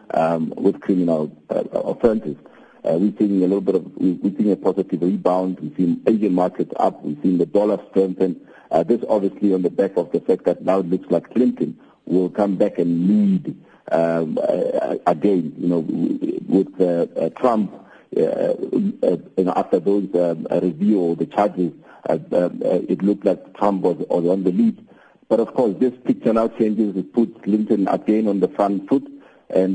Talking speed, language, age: 185 wpm, English, 50-69